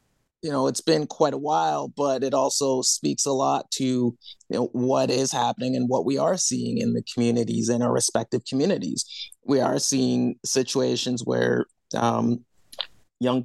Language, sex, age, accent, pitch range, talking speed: English, male, 30-49, American, 115-130 Hz, 170 wpm